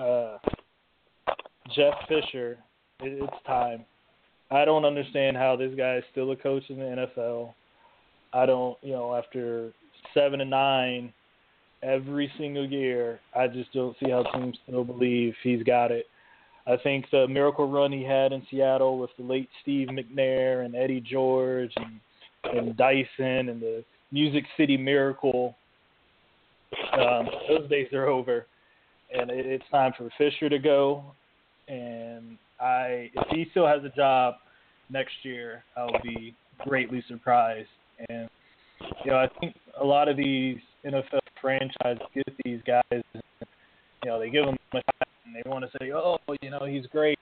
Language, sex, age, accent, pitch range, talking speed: English, male, 20-39, American, 125-140 Hz, 155 wpm